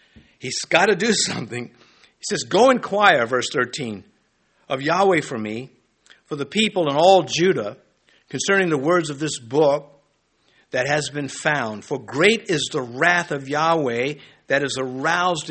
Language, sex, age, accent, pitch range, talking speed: English, male, 50-69, American, 125-175 Hz, 160 wpm